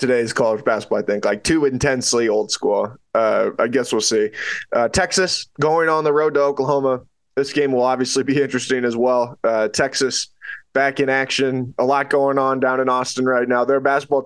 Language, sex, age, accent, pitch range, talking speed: English, male, 20-39, American, 125-145 Hz, 200 wpm